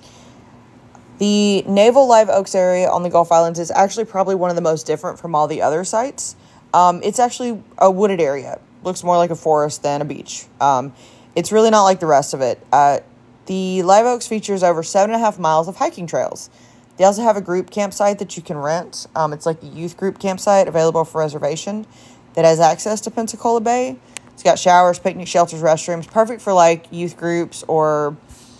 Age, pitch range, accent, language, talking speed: 20-39, 155-200 Hz, American, English, 205 wpm